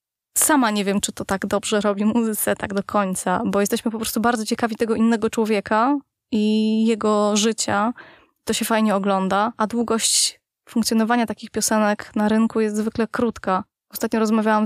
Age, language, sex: 20-39, Polish, female